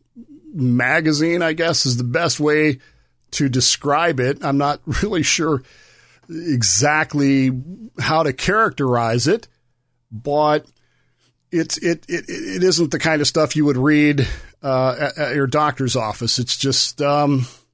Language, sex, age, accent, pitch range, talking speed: English, male, 40-59, American, 125-155 Hz, 140 wpm